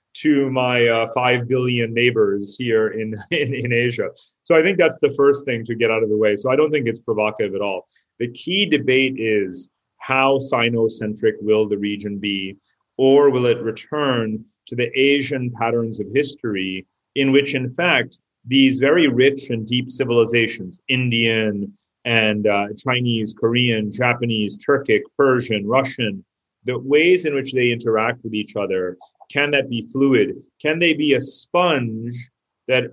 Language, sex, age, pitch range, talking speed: Czech, male, 30-49, 110-135 Hz, 165 wpm